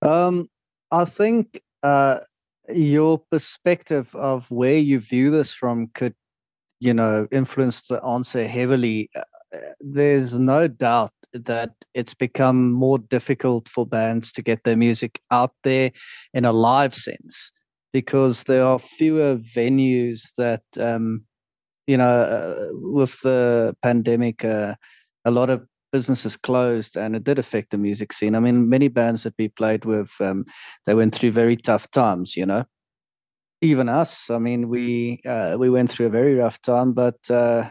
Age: 30-49